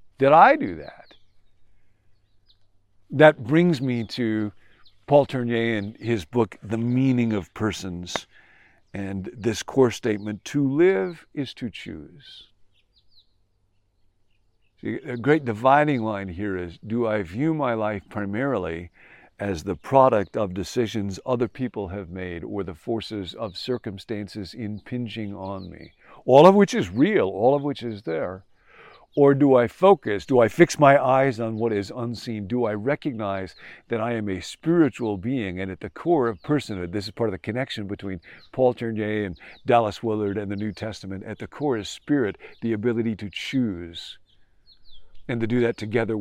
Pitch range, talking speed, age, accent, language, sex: 100-125 Hz, 160 wpm, 50-69, American, English, male